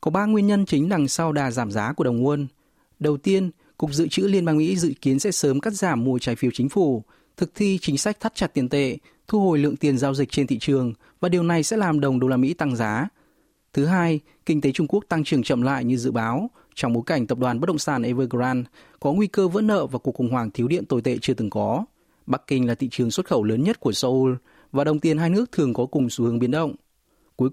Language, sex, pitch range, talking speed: Vietnamese, male, 130-170 Hz, 265 wpm